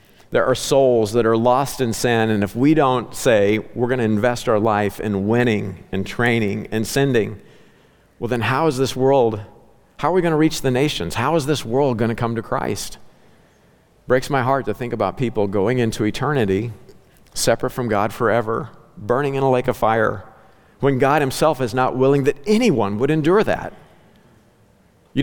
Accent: American